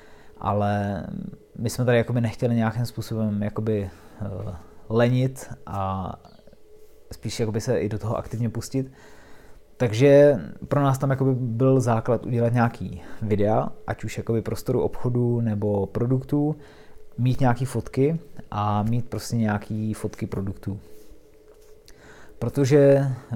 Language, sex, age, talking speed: Czech, male, 20-39, 110 wpm